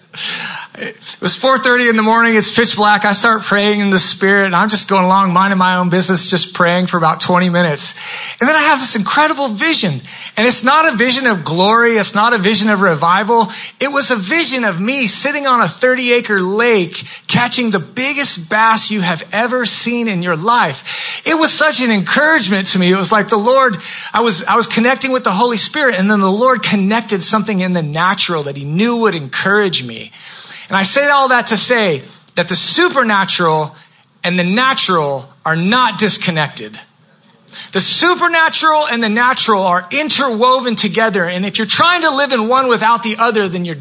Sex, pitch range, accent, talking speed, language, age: male, 180-250 Hz, American, 195 wpm, English, 30-49